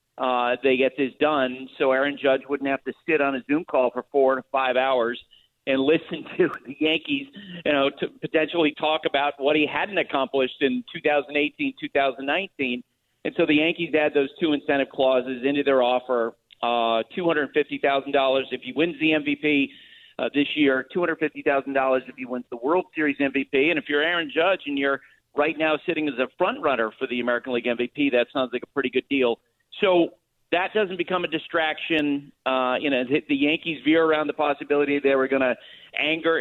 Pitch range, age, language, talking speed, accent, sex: 130-155 Hz, 50-69, English, 190 wpm, American, male